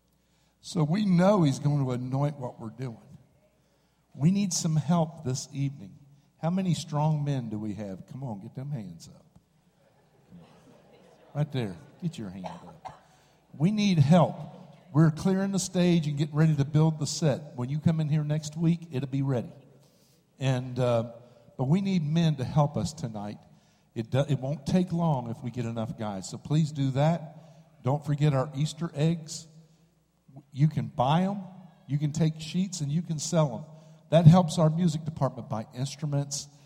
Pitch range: 135-160 Hz